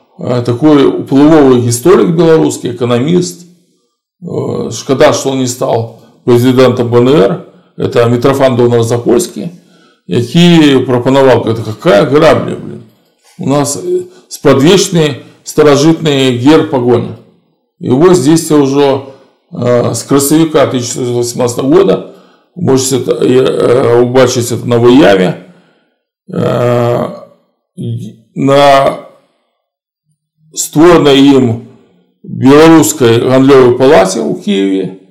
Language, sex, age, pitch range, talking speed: Russian, male, 50-69, 120-150 Hz, 90 wpm